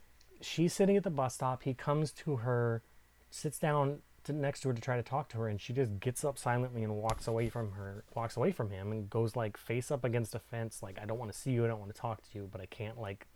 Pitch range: 110-140 Hz